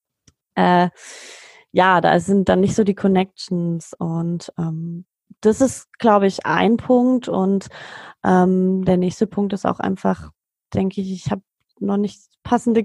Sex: female